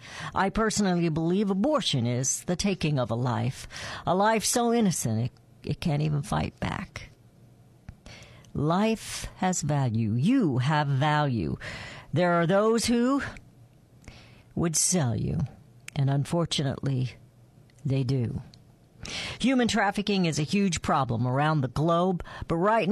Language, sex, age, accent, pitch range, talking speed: English, female, 50-69, American, 125-180 Hz, 125 wpm